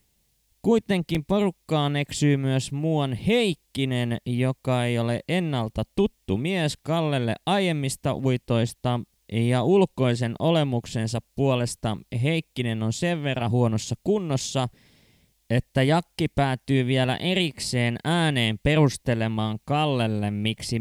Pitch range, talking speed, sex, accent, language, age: 115-160 Hz, 100 wpm, male, native, Finnish, 20-39